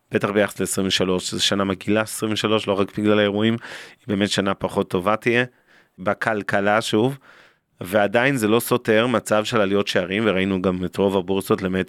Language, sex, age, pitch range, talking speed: Hebrew, male, 30-49, 100-120 Hz, 160 wpm